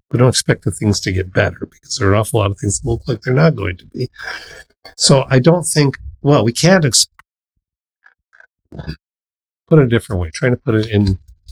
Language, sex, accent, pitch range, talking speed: English, male, American, 95-125 Hz, 220 wpm